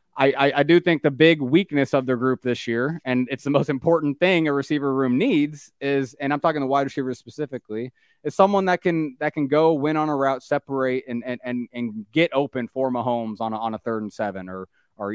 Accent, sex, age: American, male, 20-39